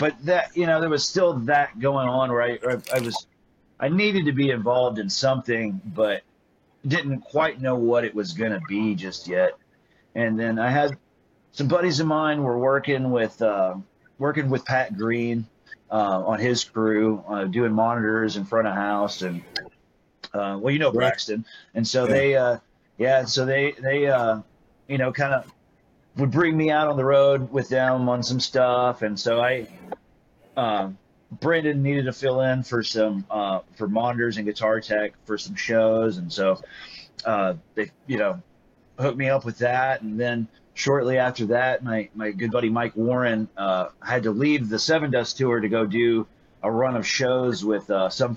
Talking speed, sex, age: 185 wpm, male, 30-49